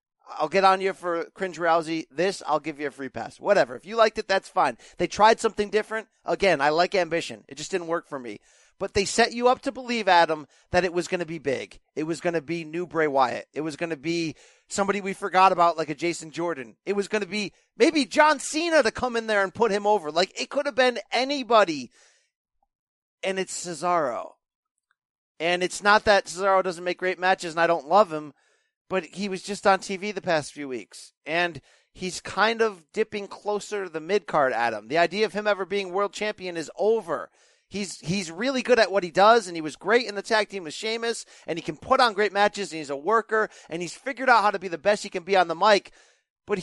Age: 30-49